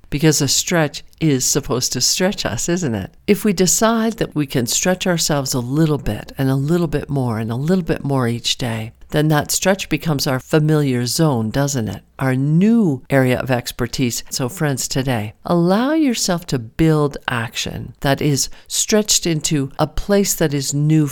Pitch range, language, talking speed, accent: 125-165 Hz, English, 180 wpm, American